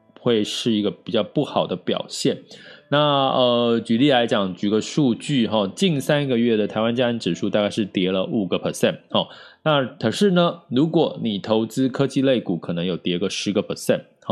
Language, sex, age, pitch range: Chinese, male, 20-39, 100-130 Hz